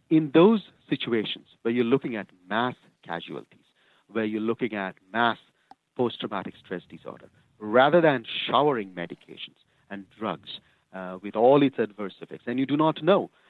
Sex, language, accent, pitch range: male, English, Indian, 100-135 Hz